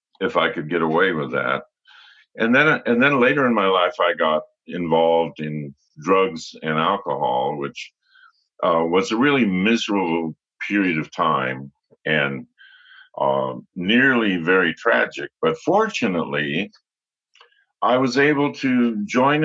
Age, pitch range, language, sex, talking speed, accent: 50-69, 85-130 Hz, English, male, 135 wpm, American